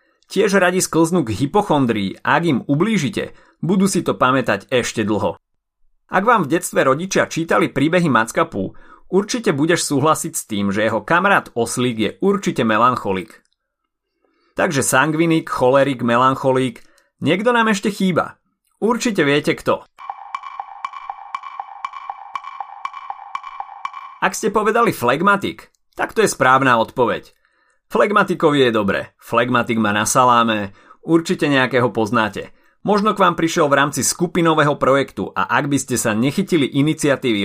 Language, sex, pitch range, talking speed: Slovak, male, 120-185 Hz, 125 wpm